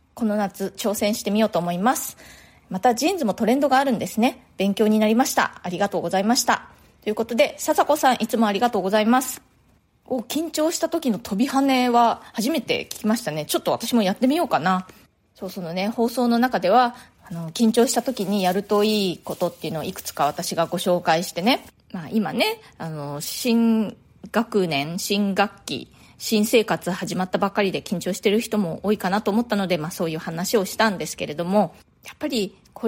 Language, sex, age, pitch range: Japanese, female, 20-39, 190-255 Hz